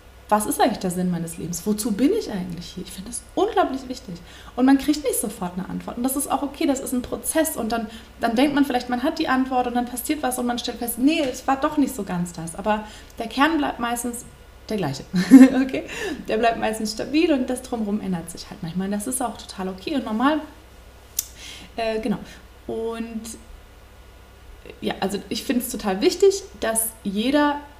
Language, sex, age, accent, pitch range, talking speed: German, female, 20-39, German, 185-260 Hz, 210 wpm